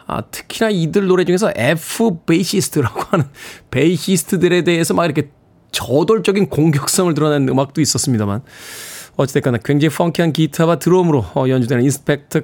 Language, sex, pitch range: Korean, male, 145-210 Hz